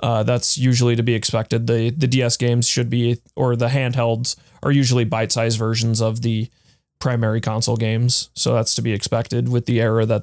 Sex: male